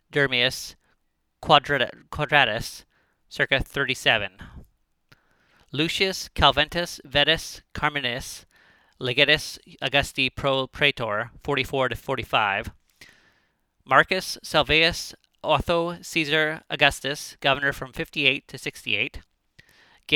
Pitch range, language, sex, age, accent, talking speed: 135-160 Hz, English, male, 30-49, American, 75 wpm